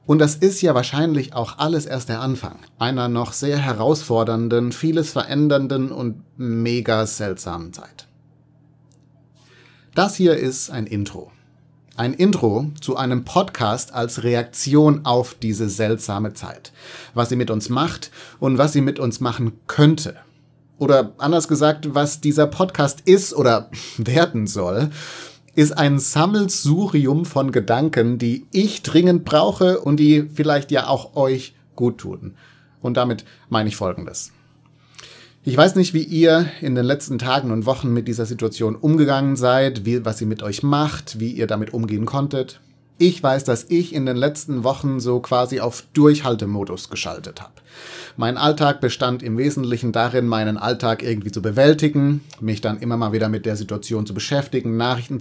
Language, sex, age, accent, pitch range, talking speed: German, male, 30-49, German, 115-145 Hz, 155 wpm